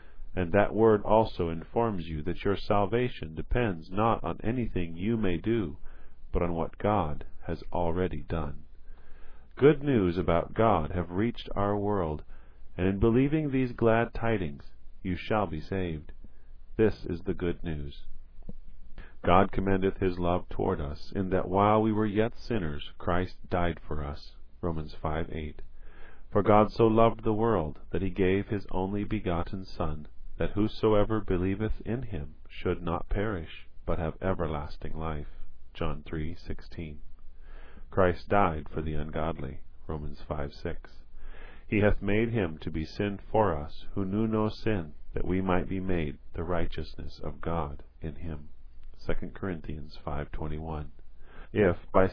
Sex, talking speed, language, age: male, 150 wpm, English, 40-59